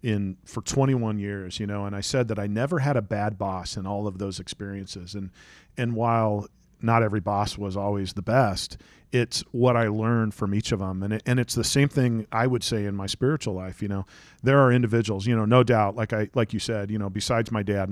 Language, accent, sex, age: English, American, male, 40-59